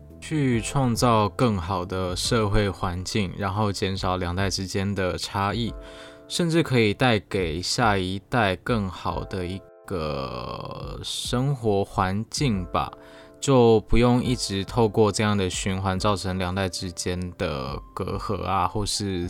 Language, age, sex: Chinese, 20-39, male